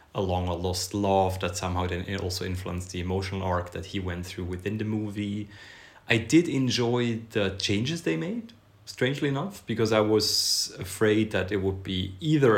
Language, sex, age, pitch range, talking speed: English, male, 30-49, 95-110 Hz, 175 wpm